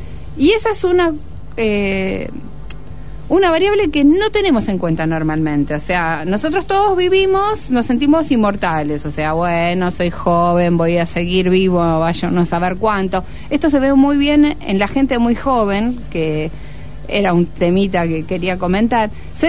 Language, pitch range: Spanish, 175-285 Hz